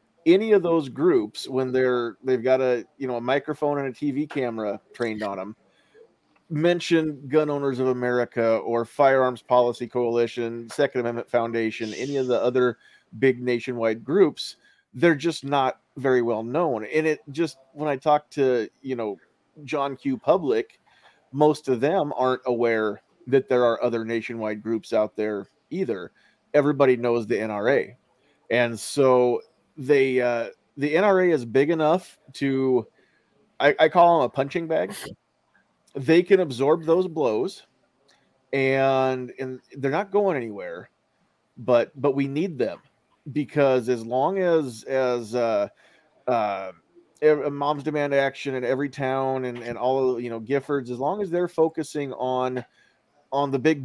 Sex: male